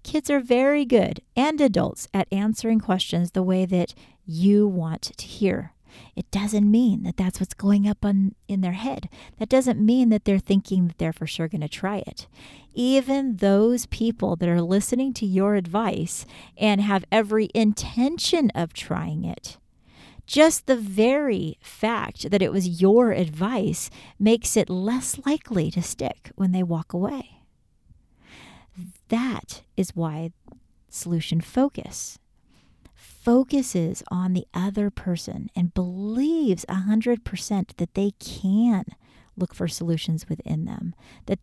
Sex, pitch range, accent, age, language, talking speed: female, 180-230 Hz, American, 40-59, English, 140 wpm